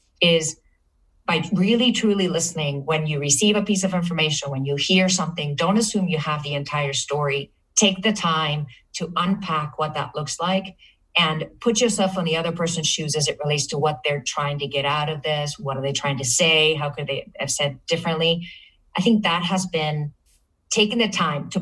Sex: female